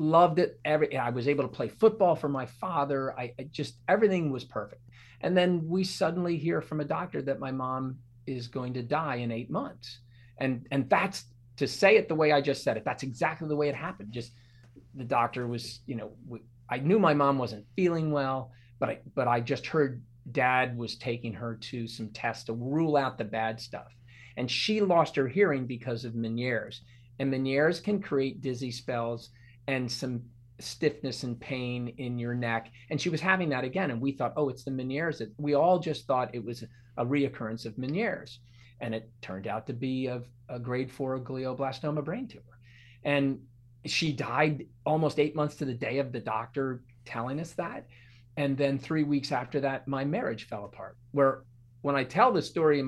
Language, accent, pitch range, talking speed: English, American, 120-145 Hz, 200 wpm